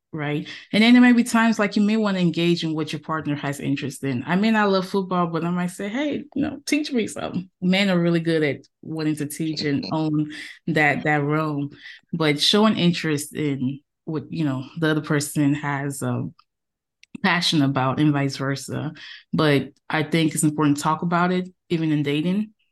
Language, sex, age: English, female, 20-39